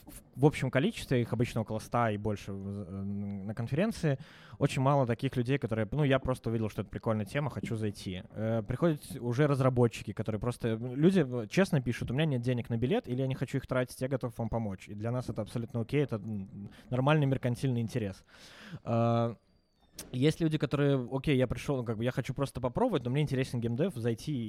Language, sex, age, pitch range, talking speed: Russian, male, 20-39, 110-135 Hz, 195 wpm